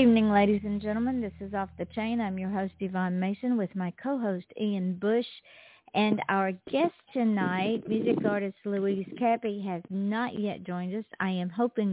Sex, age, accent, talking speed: female, 50-69, American, 180 wpm